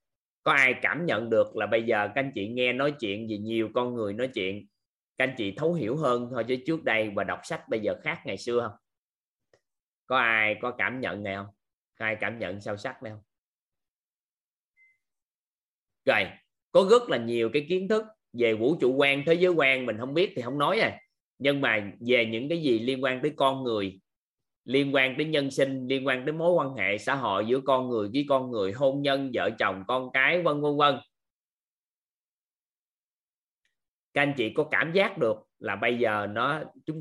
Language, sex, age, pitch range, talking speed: Vietnamese, male, 20-39, 115-150 Hz, 205 wpm